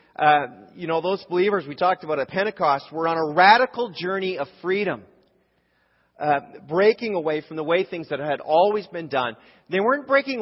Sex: male